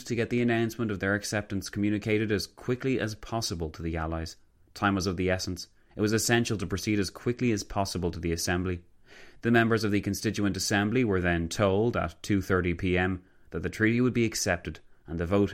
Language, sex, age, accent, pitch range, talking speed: English, male, 30-49, Irish, 90-110 Hz, 205 wpm